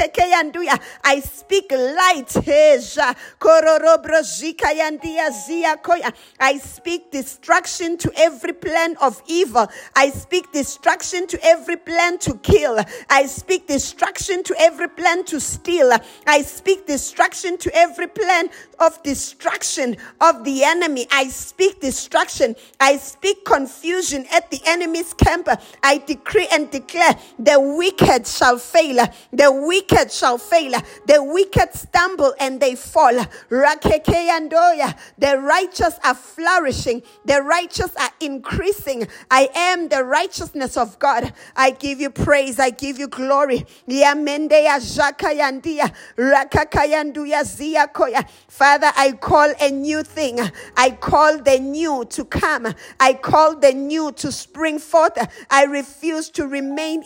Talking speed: 115 wpm